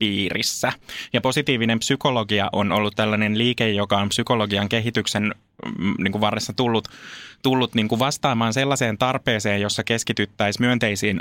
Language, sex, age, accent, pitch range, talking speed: Finnish, male, 20-39, native, 105-115 Hz, 135 wpm